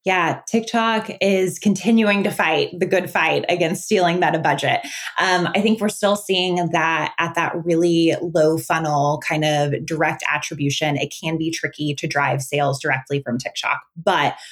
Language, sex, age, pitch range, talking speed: English, female, 20-39, 150-185 Hz, 165 wpm